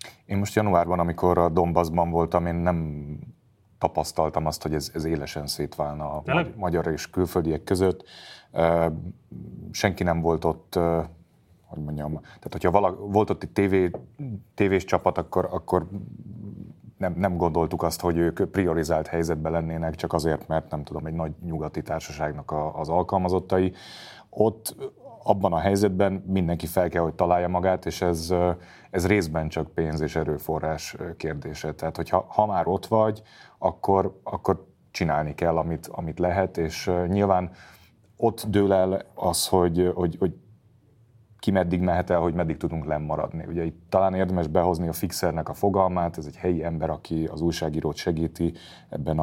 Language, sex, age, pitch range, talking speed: Hungarian, male, 30-49, 80-95 Hz, 150 wpm